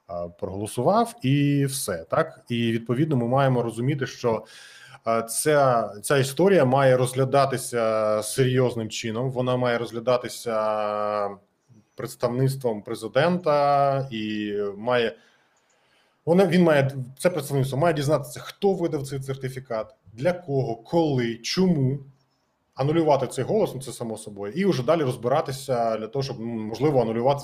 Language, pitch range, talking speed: Ukrainian, 115-145 Hz, 120 wpm